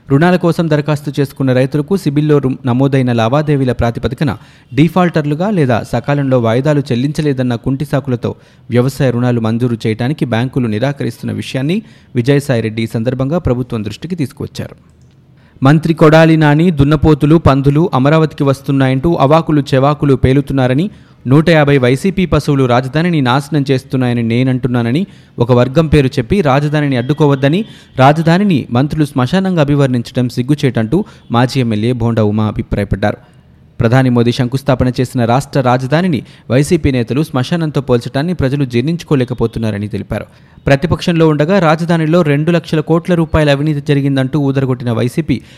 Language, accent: Telugu, native